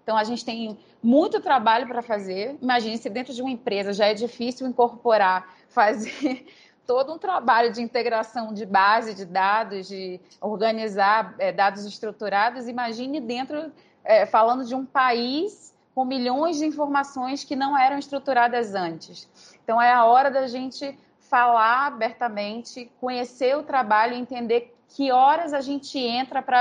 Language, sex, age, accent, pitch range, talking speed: Portuguese, female, 30-49, Brazilian, 200-255 Hz, 155 wpm